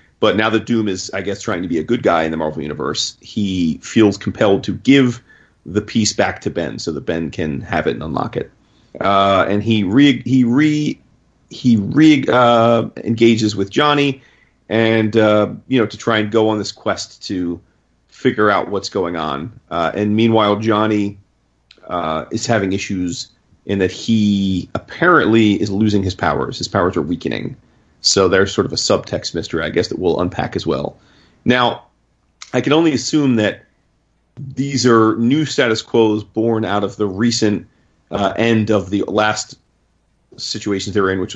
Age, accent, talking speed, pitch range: 40-59, American, 180 wpm, 100-115 Hz